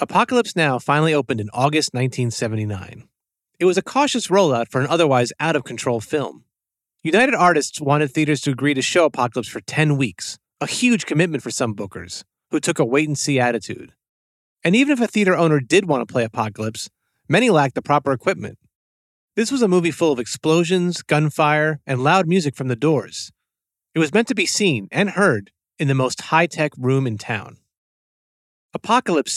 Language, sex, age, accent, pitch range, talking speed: English, male, 30-49, American, 125-185 Hz, 175 wpm